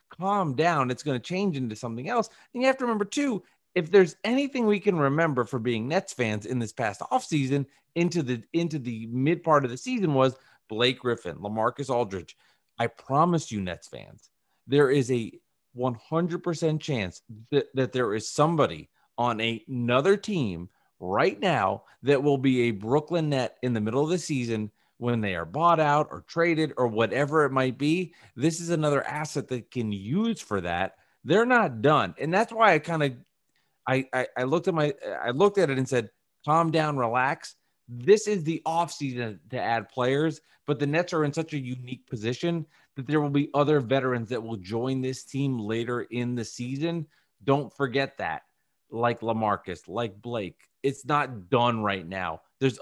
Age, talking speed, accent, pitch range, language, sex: 40-59, 185 wpm, American, 120-165 Hz, English, male